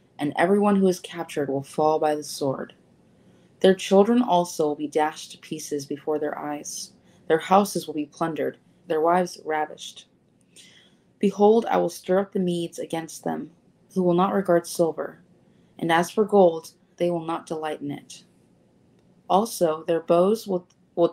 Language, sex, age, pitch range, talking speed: English, female, 20-39, 155-185 Hz, 165 wpm